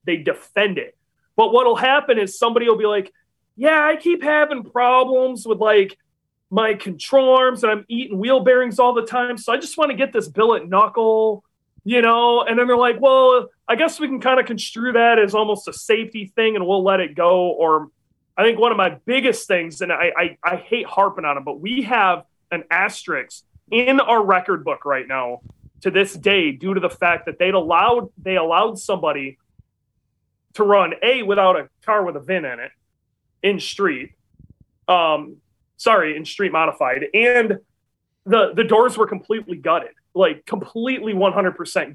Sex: male